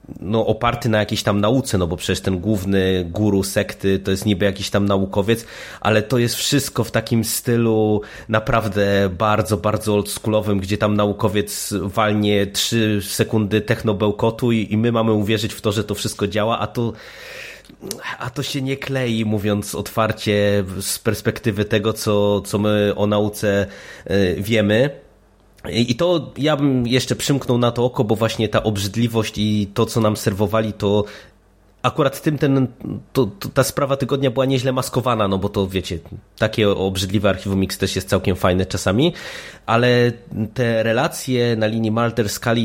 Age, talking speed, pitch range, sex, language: 20-39, 160 wpm, 100-120 Hz, male, Polish